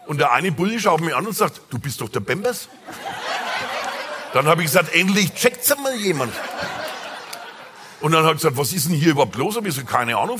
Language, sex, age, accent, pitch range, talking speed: German, male, 50-69, German, 160-245 Hz, 220 wpm